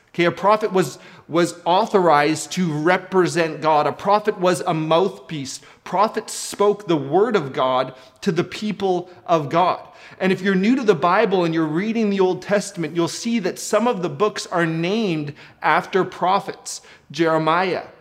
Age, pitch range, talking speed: 30-49, 165-210 Hz, 165 wpm